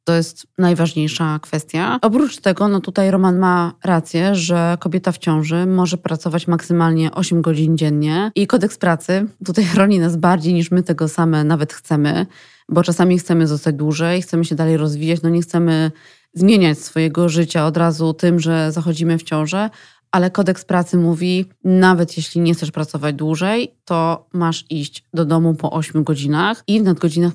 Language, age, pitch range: Polish, 20-39, 160-185 Hz